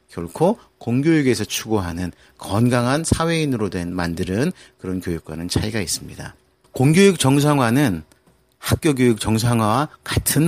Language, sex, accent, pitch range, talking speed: English, male, Korean, 90-135 Hz, 95 wpm